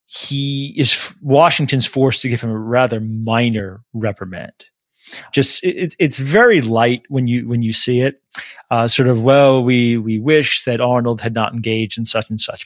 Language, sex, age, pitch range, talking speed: English, male, 30-49, 110-135 Hz, 180 wpm